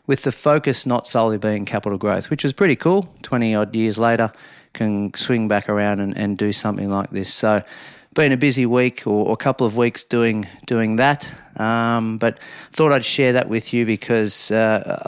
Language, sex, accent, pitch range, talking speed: English, male, Australian, 105-125 Hz, 195 wpm